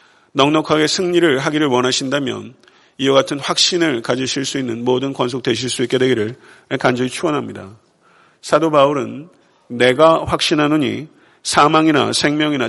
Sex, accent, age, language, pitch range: male, native, 40-59, Korean, 130-155 Hz